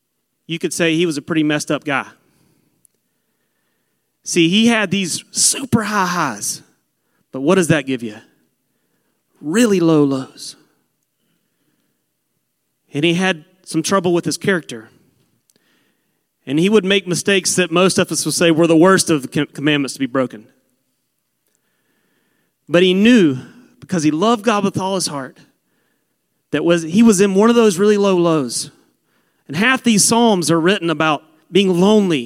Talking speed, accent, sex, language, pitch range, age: 160 wpm, American, male, English, 145-200 Hz, 30-49